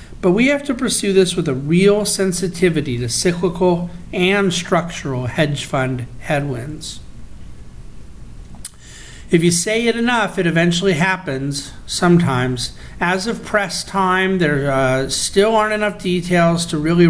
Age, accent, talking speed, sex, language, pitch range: 50-69, American, 135 wpm, male, English, 140-185 Hz